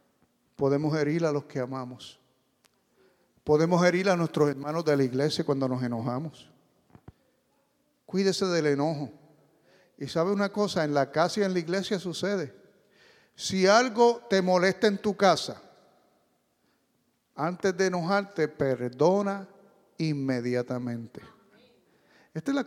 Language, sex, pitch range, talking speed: English, male, 145-205 Hz, 125 wpm